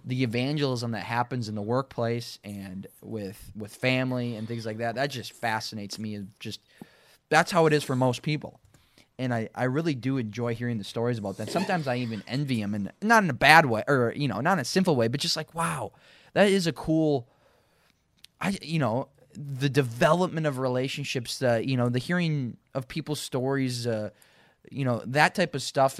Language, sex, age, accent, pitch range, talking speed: English, male, 20-39, American, 110-140 Hz, 205 wpm